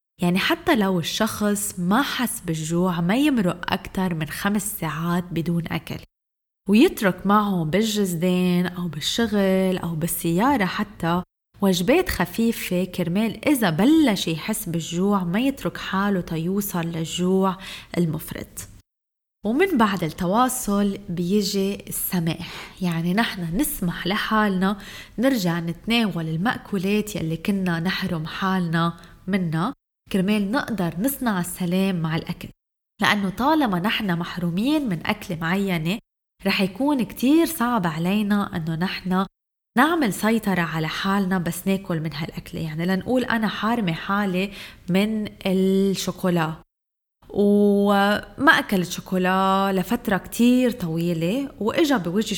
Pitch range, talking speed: 175-220 Hz, 110 wpm